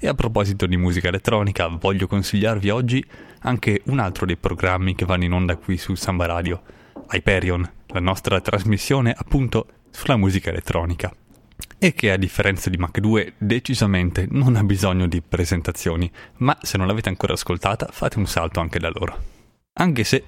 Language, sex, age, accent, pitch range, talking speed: Italian, male, 20-39, native, 90-115 Hz, 170 wpm